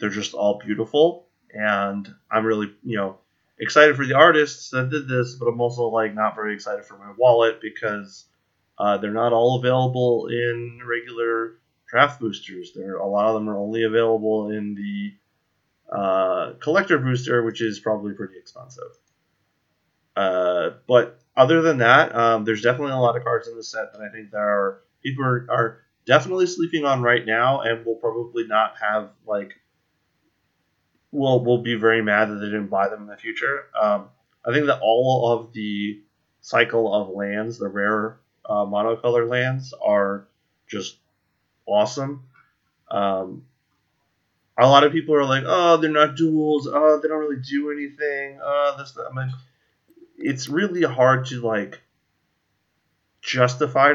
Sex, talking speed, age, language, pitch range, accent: male, 160 wpm, 30-49, English, 105-135 Hz, American